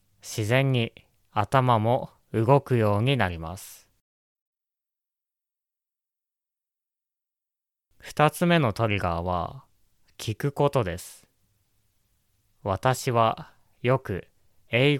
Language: Japanese